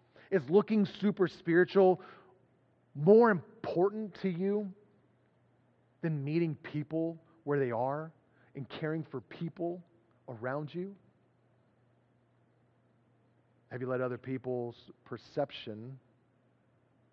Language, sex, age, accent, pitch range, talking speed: English, male, 40-59, American, 115-145 Hz, 90 wpm